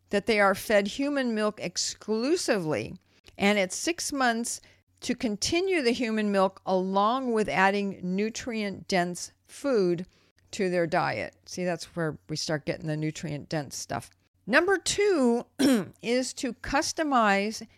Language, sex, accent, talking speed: English, female, American, 130 wpm